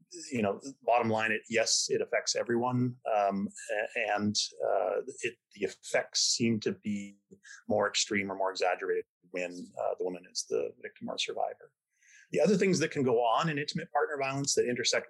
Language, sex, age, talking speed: English, male, 30-49, 185 wpm